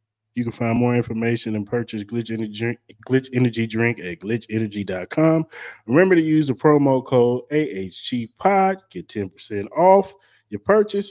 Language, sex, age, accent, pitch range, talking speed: English, male, 30-49, American, 105-130 Hz, 135 wpm